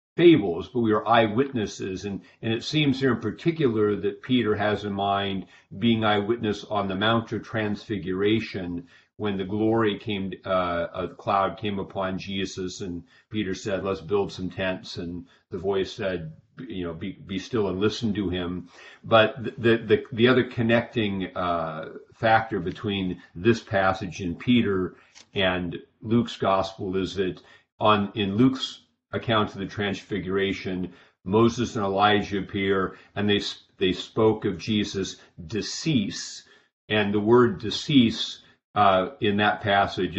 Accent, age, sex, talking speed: American, 50-69, male, 150 wpm